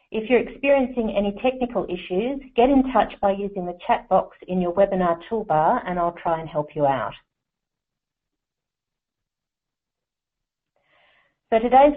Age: 50-69